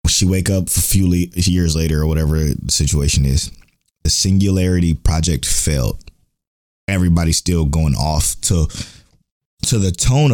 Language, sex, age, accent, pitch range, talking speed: English, male, 20-39, American, 80-100 Hz, 145 wpm